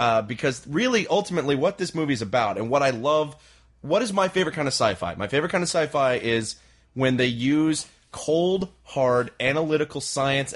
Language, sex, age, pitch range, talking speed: English, male, 30-49, 105-135 Hz, 190 wpm